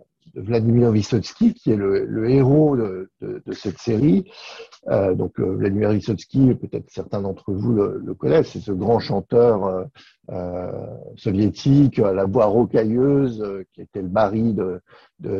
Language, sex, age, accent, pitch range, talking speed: French, male, 60-79, French, 100-135 Hz, 150 wpm